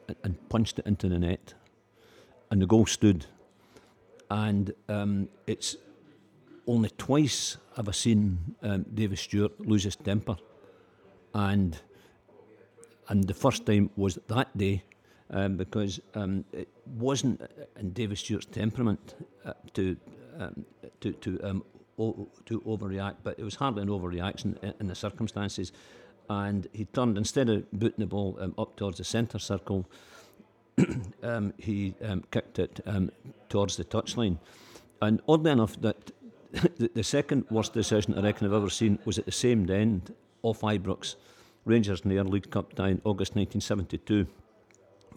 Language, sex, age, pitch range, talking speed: English, male, 50-69, 100-110 Hz, 150 wpm